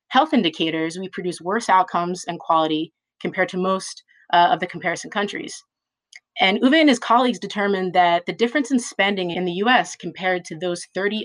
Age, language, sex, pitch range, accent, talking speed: 30-49, English, female, 170-220 Hz, American, 180 wpm